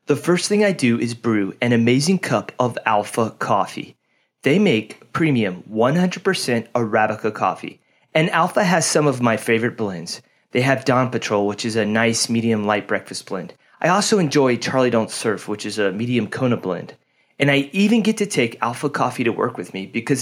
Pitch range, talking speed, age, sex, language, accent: 115-150 Hz, 190 wpm, 30-49, male, English, American